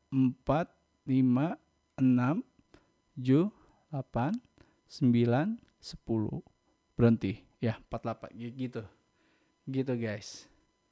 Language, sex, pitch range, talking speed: Indonesian, male, 115-145 Hz, 70 wpm